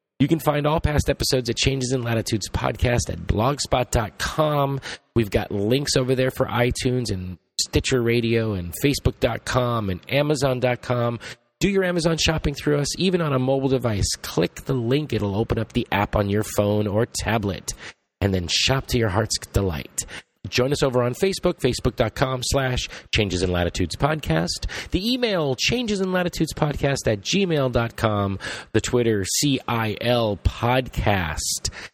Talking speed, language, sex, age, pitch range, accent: 155 wpm, English, male, 30-49, 100-135 Hz, American